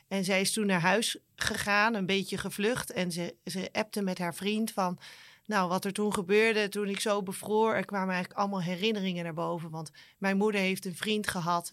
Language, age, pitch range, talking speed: Dutch, 30-49, 175-210 Hz, 210 wpm